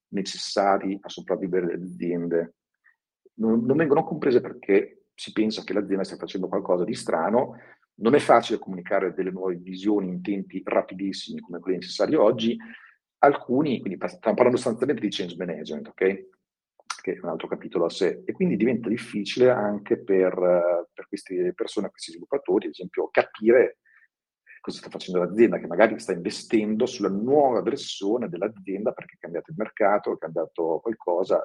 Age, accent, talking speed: 40-59, native, 160 wpm